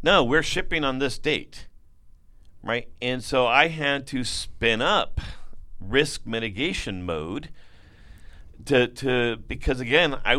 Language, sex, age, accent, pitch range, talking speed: English, male, 50-69, American, 100-145 Hz, 125 wpm